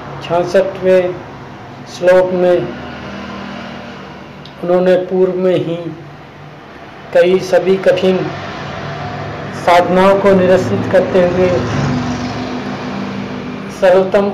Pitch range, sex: 160-185 Hz, male